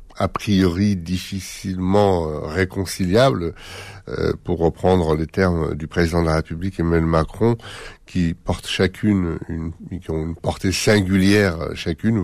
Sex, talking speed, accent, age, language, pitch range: male, 130 wpm, French, 60-79, French, 85-100 Hz